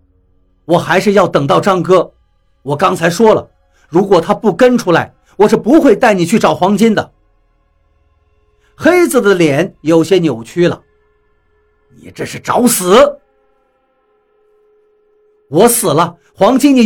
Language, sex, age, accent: Chinese, male, 50-69, native